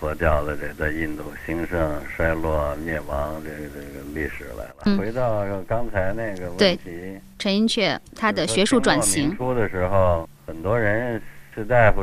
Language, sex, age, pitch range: Chinese, male, 60-79, 80-95 Hz